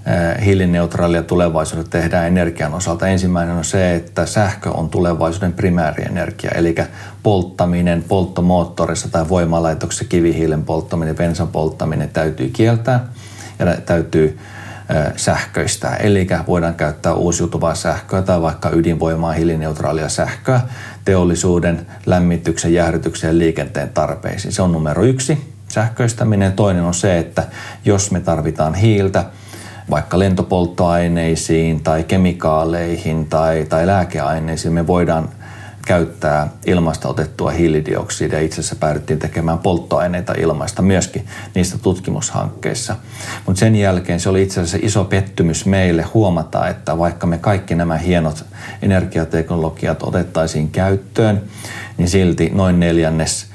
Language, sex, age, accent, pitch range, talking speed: Finnish, male, 30-49, native, 80-100 Hz, 115 wpm